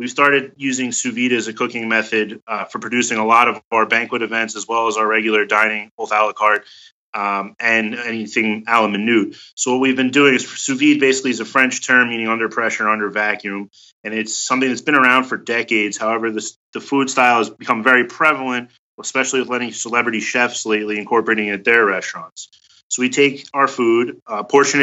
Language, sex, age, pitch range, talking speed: English, male, 30-49, 110-125 Hz, 210 wpm